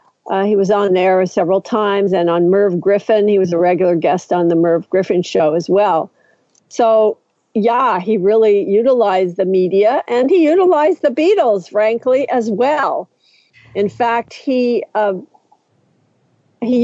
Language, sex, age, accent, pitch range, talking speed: English, female, 50-69, American, 195-245 Hz, 155 wpm